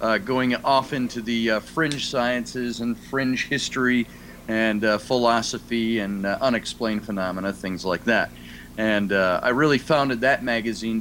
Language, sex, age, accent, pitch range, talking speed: English, male, 40-59, American, 100-130 Hz, 155 wpm